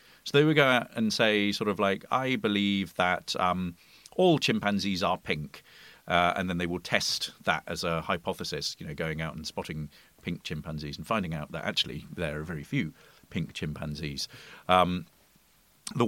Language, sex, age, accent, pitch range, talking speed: English, male, 40-59, British, 85-110 Hz, 185 wpm